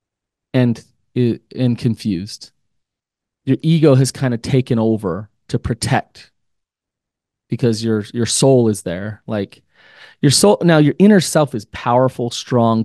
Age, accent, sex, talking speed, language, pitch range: 30-49, American, male, 130 wpm, English, 110-135 Hz